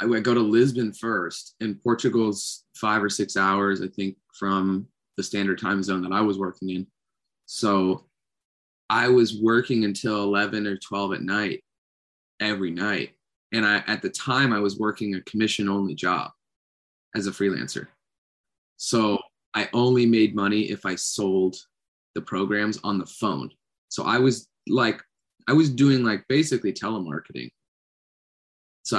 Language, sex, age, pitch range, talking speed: English, male, 20-39, 95-110 Hz, 155 wpm